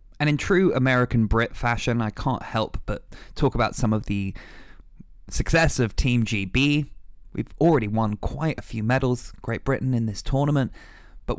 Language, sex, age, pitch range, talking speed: English, male, 20-39, 105-125 Hz, 165 wpm